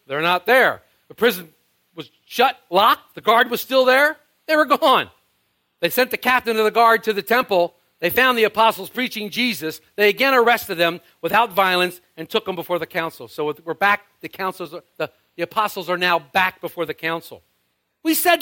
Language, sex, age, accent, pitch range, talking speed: English, male, 50-69, American, 200-285 Hz, 195 wpm